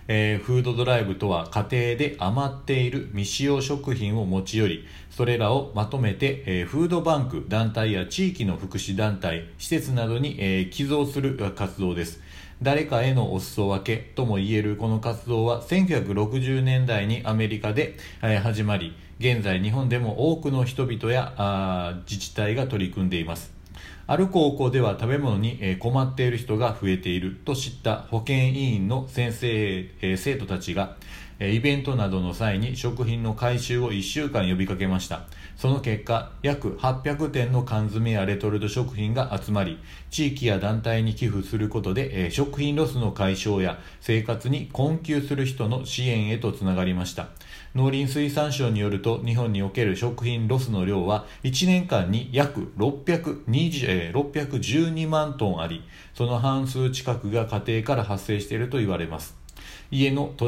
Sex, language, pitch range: male, Japanese, 100-130 Hz